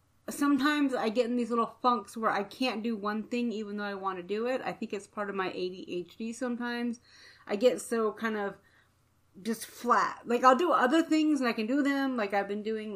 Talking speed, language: 225 wpm, English